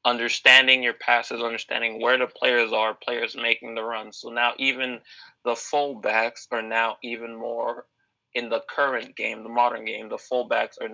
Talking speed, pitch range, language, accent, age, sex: 170 wpm, 115-135 Hz, English, American, 20-39, male